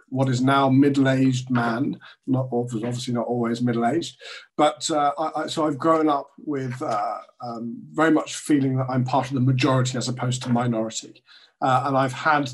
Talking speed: 175 wpm